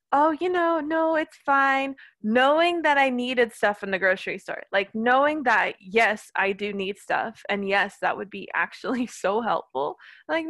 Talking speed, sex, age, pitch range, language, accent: 185 wpm, female, 20-39, 200-270 Hz, English, American